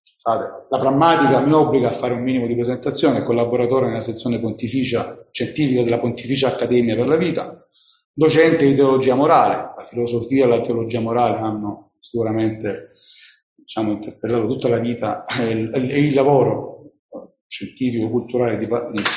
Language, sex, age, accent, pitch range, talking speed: Italian, male, 40-59, native, 115-140 Hz, 145 wpm